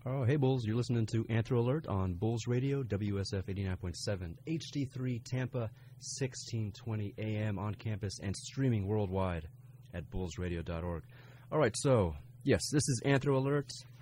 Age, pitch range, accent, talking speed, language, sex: 30-49, 95-125 Hz, American, 135 wpm, English, male